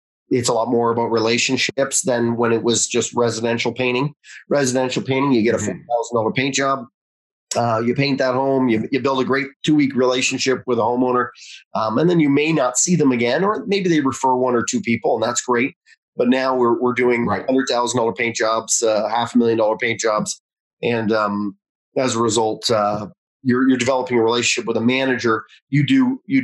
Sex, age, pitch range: male, 30-49, 115-135 Hz